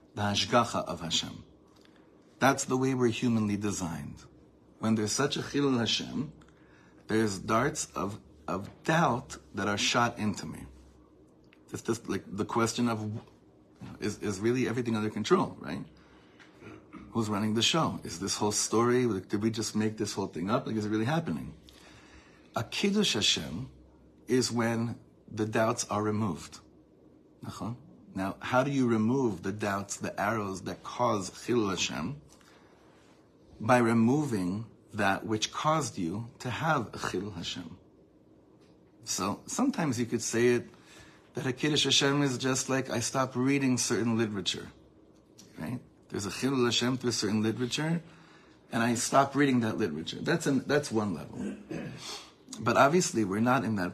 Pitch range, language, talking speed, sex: 105-125 Hz, English, 155 wpm, male